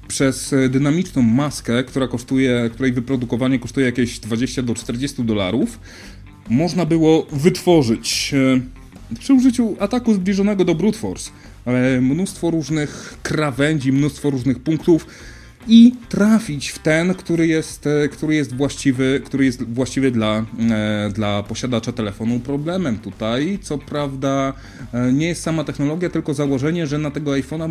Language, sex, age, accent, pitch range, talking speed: Polish, male, 30-49, native, 115-155 Hz, 130 wpm